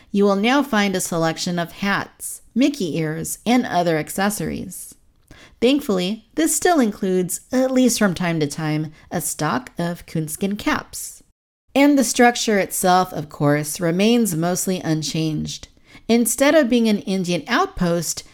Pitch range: 165-240 Hz